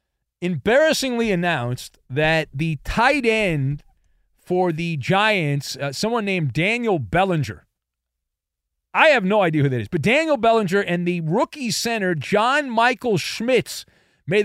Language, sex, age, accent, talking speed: English, male, 40-59, American, 135 wpm